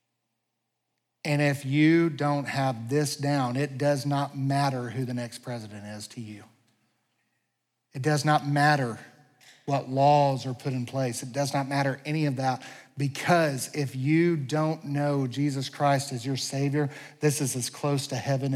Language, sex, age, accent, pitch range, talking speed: English, male, 40-59, American, 125-145 Hz, 165 wpm